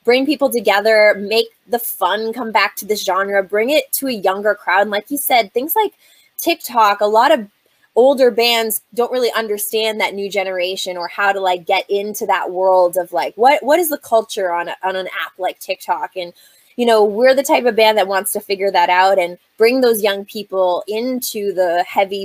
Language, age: English, 20-39